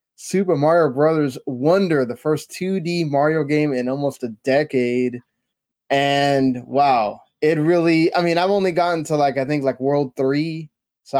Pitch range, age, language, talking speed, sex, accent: 135-155 Hz, 20-39, English, 160 wpm, male, American